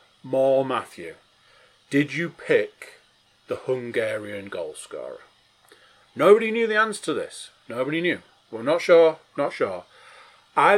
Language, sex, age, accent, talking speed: English, male, 40-59, British, 120 wpm